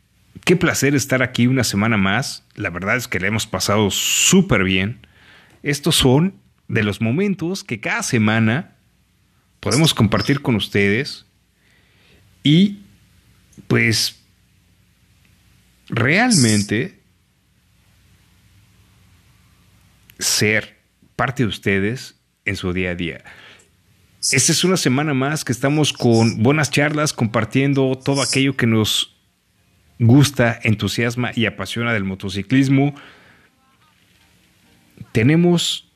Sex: male